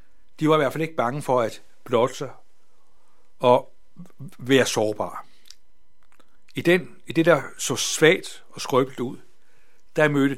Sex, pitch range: male, 120-150 Hz